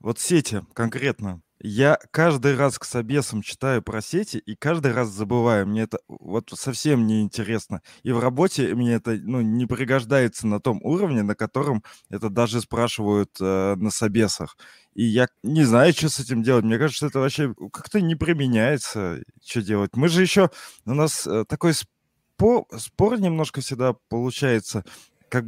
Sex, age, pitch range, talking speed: male, 20-39, 110-145 Hz, 165 wpm